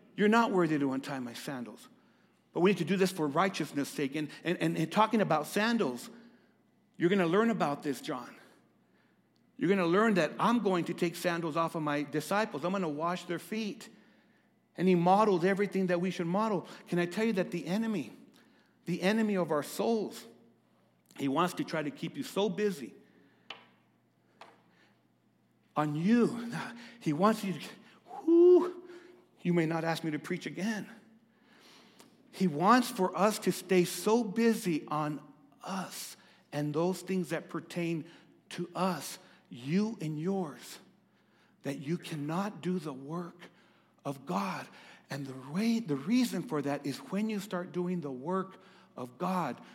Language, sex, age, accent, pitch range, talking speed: English, male, 60-79, American, 160-210 Hz, 165 wpm